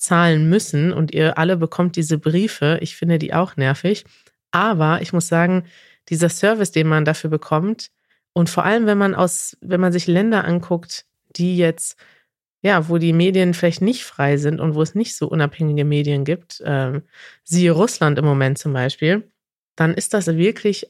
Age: 30-49